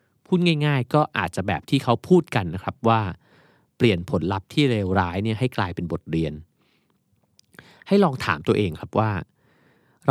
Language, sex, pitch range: Thai, male, 95-135 Hz